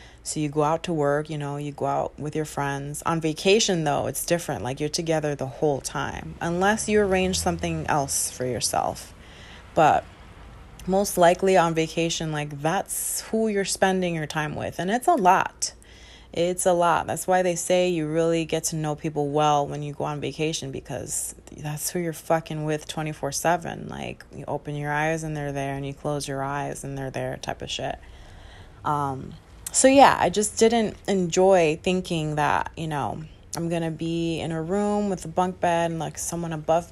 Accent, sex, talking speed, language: American, female, 195 wpm, English